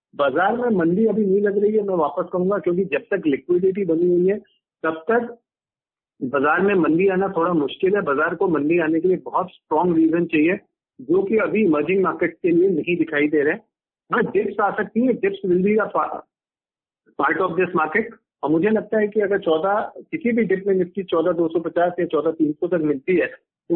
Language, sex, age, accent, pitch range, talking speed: Hindi, male, 50-69, native, 170-215 Hz, 200 wpm